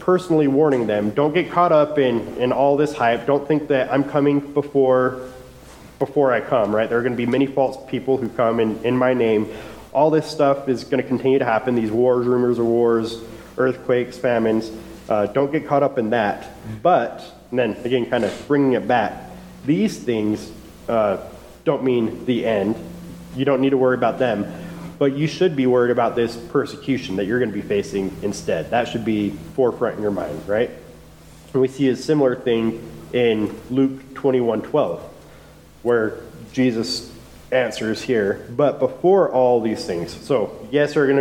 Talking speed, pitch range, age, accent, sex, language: 185 wpm, 115-135 Hz, 30-49, American, male, English